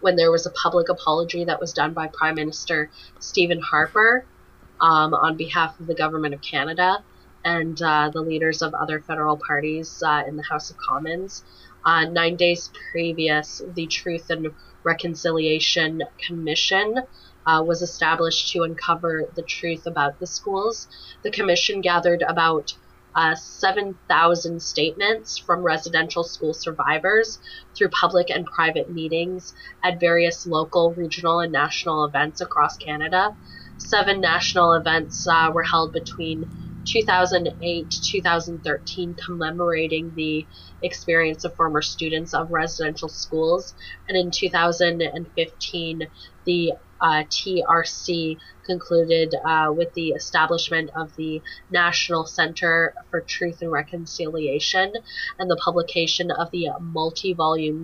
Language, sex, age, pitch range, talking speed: English, female, 20-39, 160-175 Hz, 125 wpm